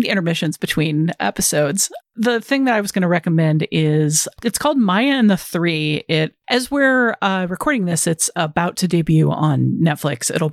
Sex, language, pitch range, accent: female, English, 155-205 Hz, American